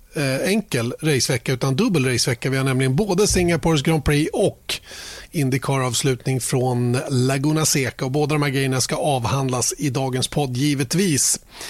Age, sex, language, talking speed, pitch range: 30-49, male, Swedish, 150 wpm, 130-160 Hz